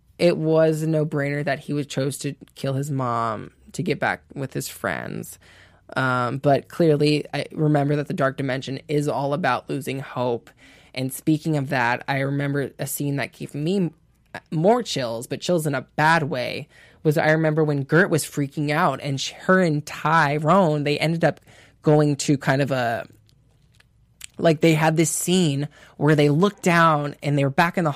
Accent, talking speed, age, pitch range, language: American, 180 wpm, 20-39, 140-165 Hz, English